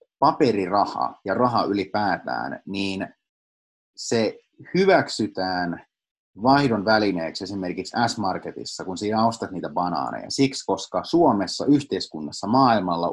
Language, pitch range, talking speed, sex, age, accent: Finnish, 90-115 Hz, 95 wpm, male, 30-49, native